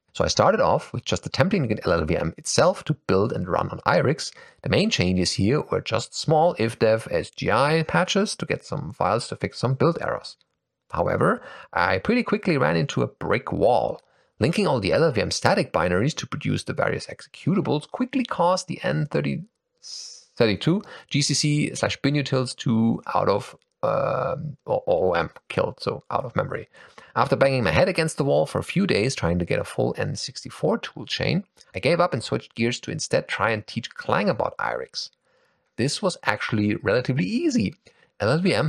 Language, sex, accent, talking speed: English, male, German, 170 wpm